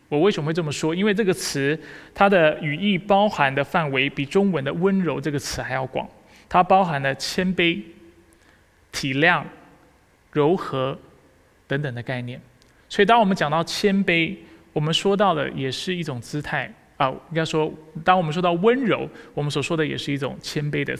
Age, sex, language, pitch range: 20-39, male, Chinese, 140-180 Hz